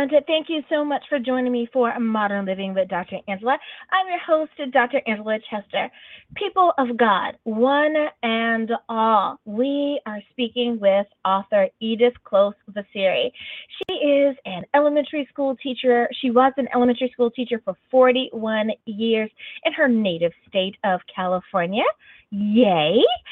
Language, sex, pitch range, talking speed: English, female, 210-280 Hz, 140 wpm